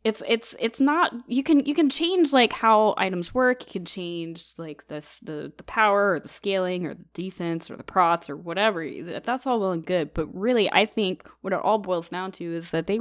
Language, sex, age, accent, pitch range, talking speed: English, female, 20-39, American, 155-195 Hz, 230 wpm